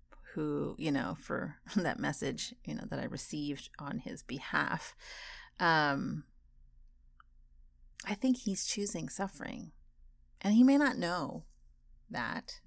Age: 30-49